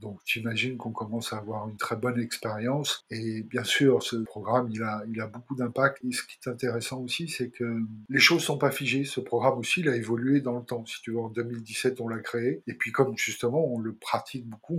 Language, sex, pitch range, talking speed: French, male, 115-135 Hz, 245 wpm